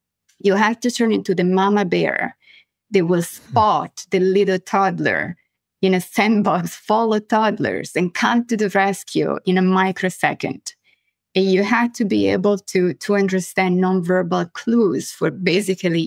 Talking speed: 150 wpm